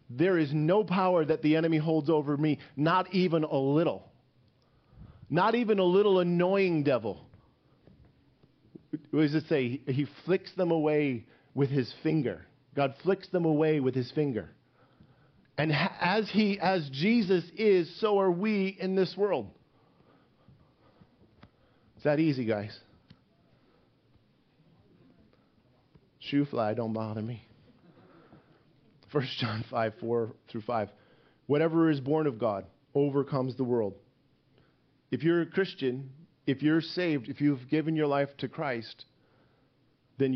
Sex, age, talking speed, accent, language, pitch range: male, 40-59, 130 wpm, American, English, 130-165 Hz